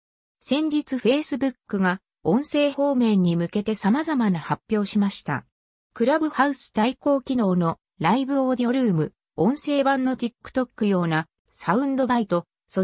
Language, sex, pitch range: Japanese, female, 180-265 Hz